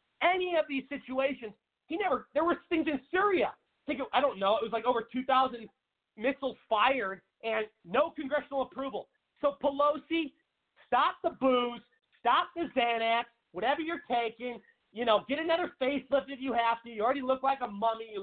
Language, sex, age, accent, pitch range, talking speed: English, male, 40-59, American, 220-270 Hz, 170 wpm